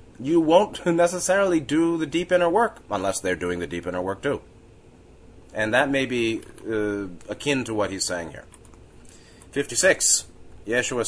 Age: 30-49